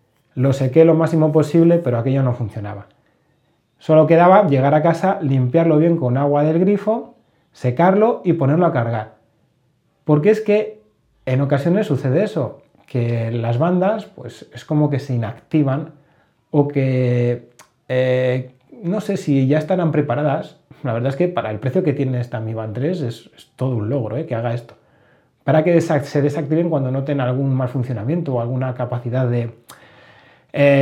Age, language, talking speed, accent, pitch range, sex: 30-49, Spanish, 165 wpm, Spanish, 125-165 Hz, male